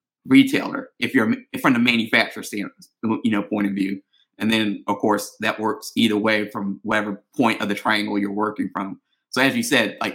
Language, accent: English, American